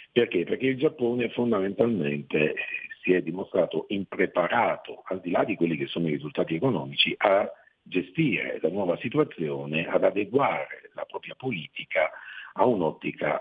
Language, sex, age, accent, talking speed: Italian, male, 50-69, native, 140 wpm